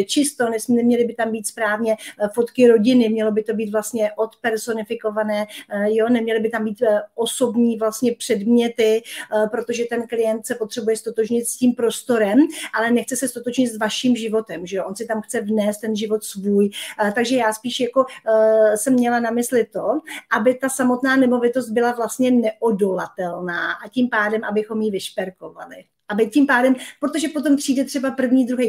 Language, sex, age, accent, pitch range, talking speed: Czech, female, 40-59, native, 220-245 Hz, 165 wpm